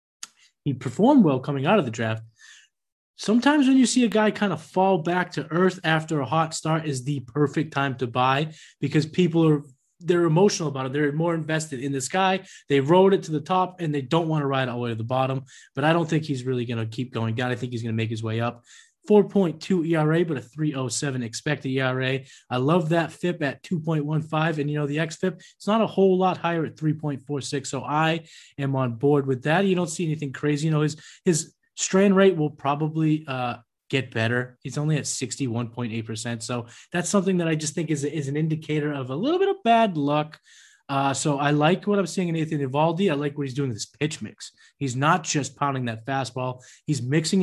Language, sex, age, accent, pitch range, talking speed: English, male, 20-39, American, 135-180 Hz, 225 wpm